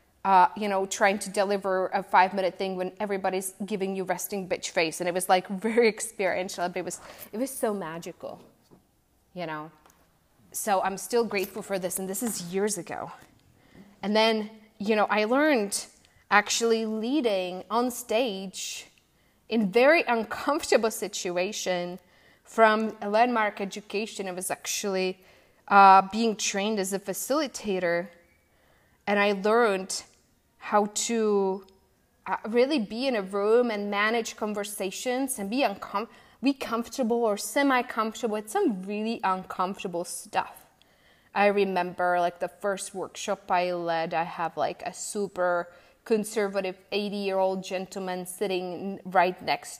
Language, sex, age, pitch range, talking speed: English, female, 20-39, 185-220 Hz, 135 wpm